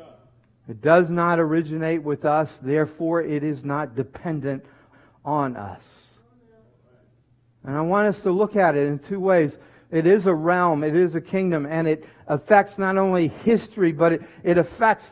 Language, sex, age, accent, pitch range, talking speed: English, male, 50-69, American, 130-185 Hz, 165 wpm